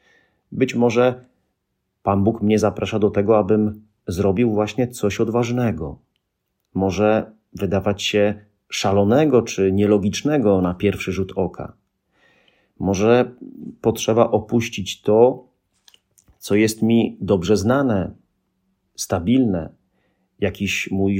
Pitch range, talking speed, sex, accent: 95-115 Hz, 100 wpm, male, native